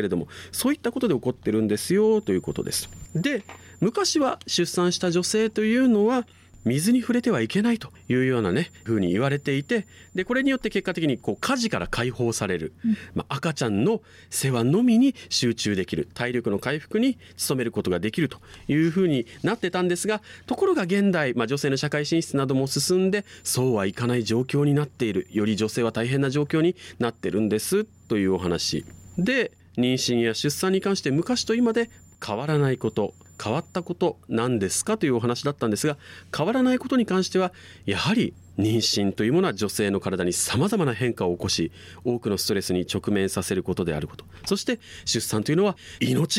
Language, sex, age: Japanese, male, 40-59